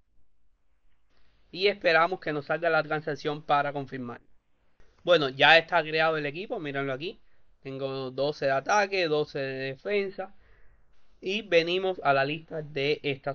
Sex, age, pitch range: male, 30-49, 110-165 Hz